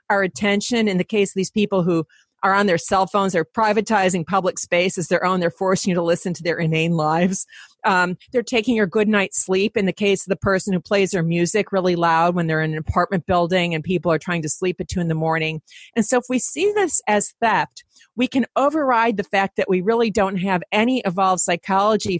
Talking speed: 235 wpm